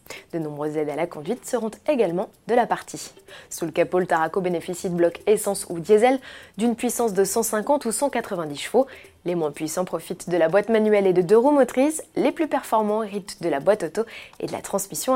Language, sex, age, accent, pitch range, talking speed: French, female, 20-39, French, 170-240 Hz, 215 wpm